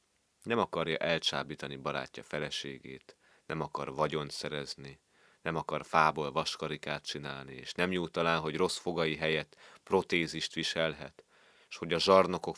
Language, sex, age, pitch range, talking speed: Hungarian, male, 30-49, 75-85 Hz, 135 wpm